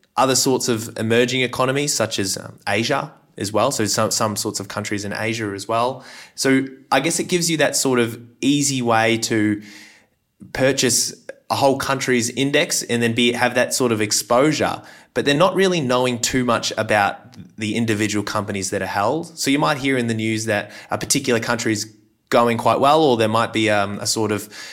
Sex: male